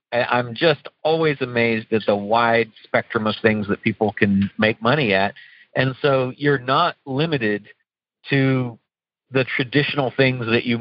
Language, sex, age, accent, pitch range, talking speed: English, male, 50-69, American, 115-135 Hz, 150 wpm